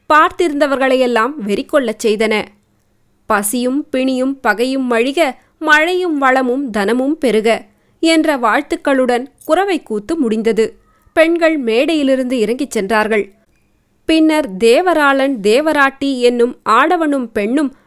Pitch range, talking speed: 225-300 Hz, 85 wpm